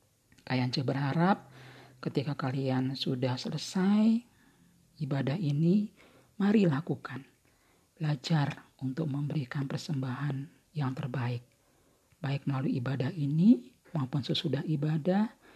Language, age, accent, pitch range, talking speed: Indonesian, 40-59, native, 135-165 Hz, 90 wpm